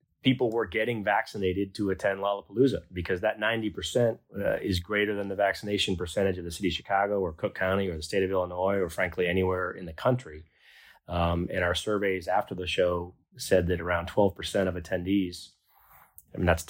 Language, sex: English, male